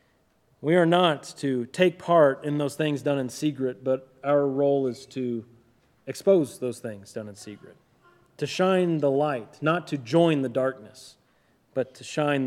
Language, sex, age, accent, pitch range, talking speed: English, male, 30-49, American, 130-170 Hz, 170 wpm